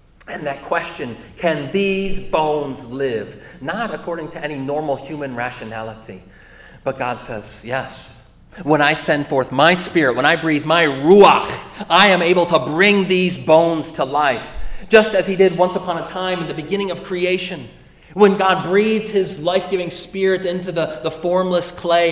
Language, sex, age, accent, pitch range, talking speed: English, male, 30-49, American, 135-180 Hz, 170 wpm